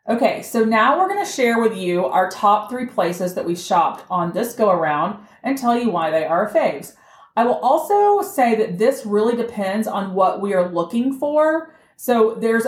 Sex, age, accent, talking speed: female, 30-49, American, 205 wpm